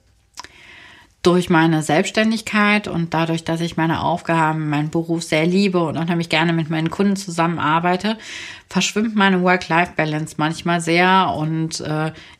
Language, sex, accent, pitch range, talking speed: German, female, German, 155-195 Hz, 135 wpm